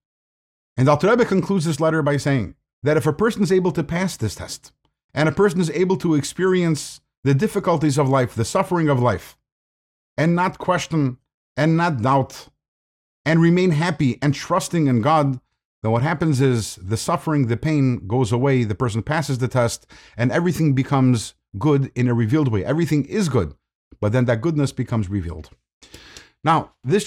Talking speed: 175 wpm